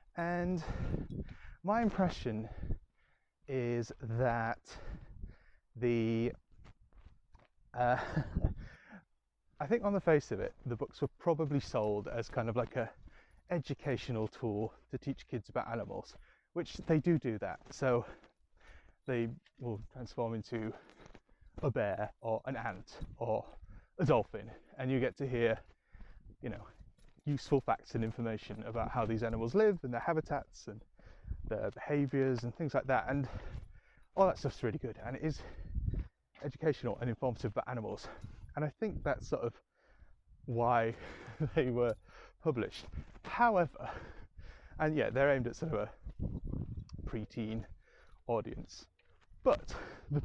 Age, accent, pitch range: 20-39, British, 115-145 Hz